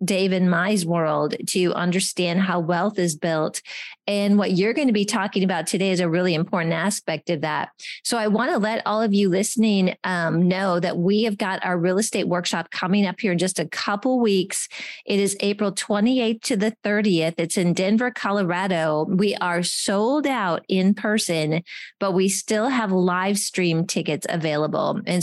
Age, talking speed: 30-49, 190 wpm